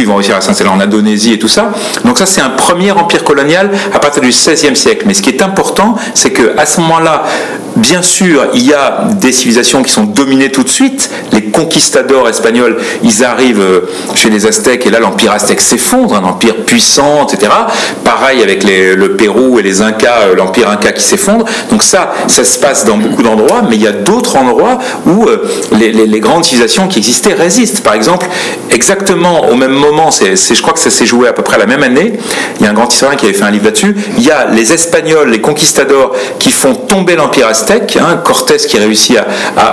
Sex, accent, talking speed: male, French, 220 wpm